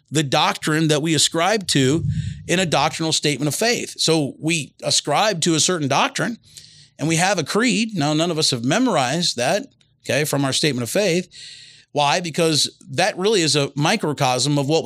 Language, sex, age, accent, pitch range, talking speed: English, male, 40-59, American, 135-170 Hz, 185 wpm